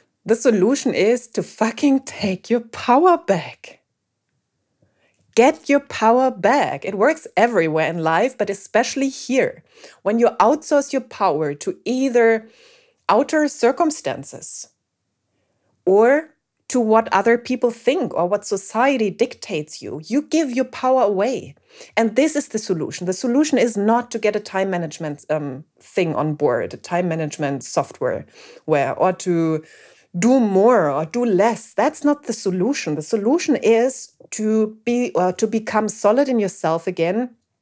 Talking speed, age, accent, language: 145 wpm, 30-49, German, English